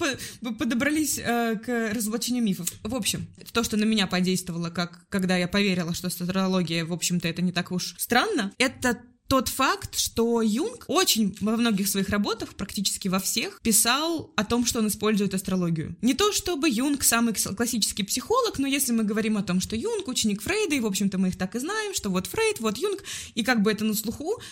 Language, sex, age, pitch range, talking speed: Russian, female, 20-39, 200-250 Hz, 200 wpm